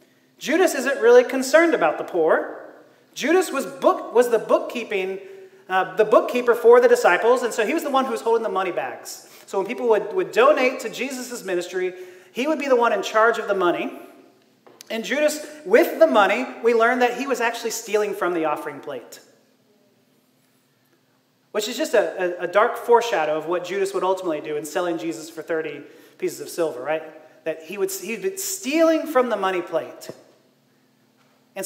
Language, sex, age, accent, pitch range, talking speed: English, male, 30-49, American, 200-310 Hz, 190 wpm